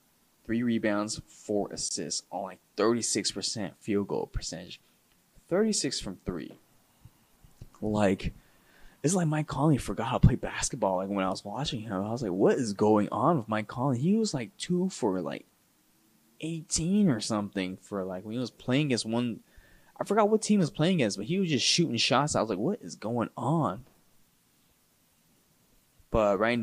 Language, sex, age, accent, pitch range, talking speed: English, male, 20-39, American, 105-135 Hz, 180 wpm